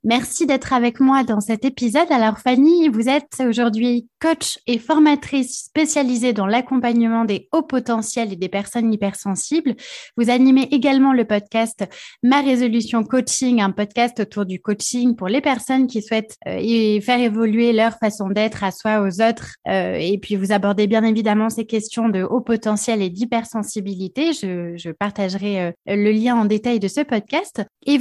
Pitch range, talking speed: 210-265 Hz, 170 wpm